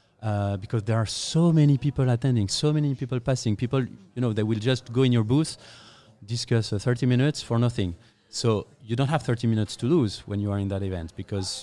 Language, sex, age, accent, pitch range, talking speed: English, male, 30-49, French, 115-135 Hz, 220 wpm